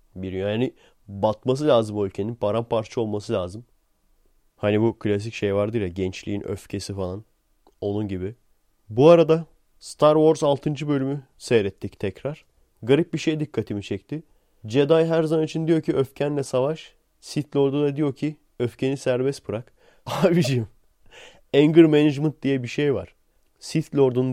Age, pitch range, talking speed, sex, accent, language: 30-49, 110-150 Hz, 145 wpm, male, native, Turkish